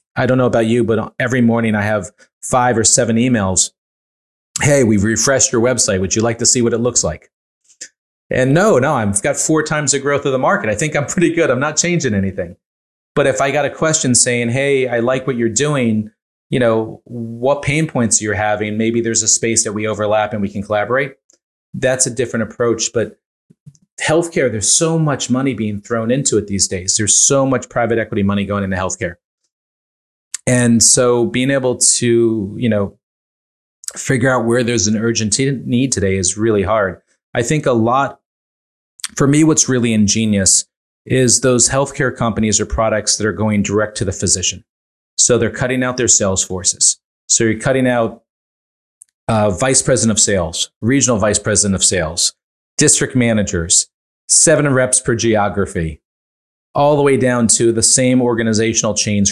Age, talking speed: 30-49, 185 wpm